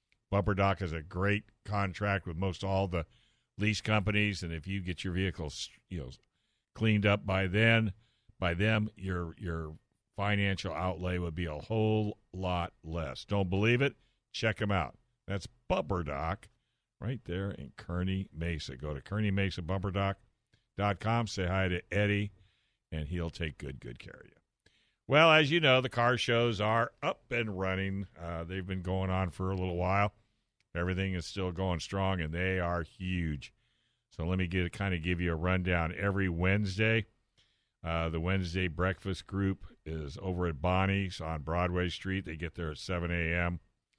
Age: 60-79